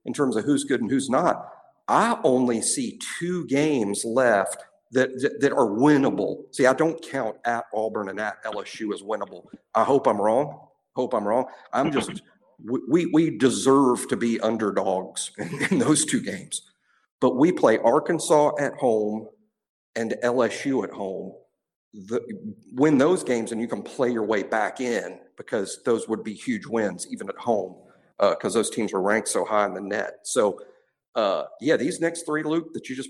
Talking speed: 185 wpm